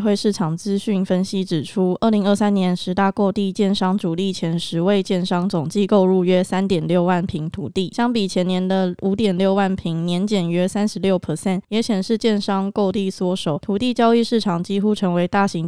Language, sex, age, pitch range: Chinese, female, 20-39, 175-200 Hz